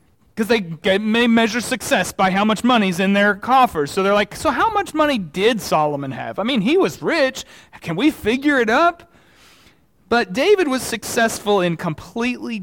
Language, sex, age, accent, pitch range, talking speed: English, male, 40-59, American, 185-240 Hz, 185 wpm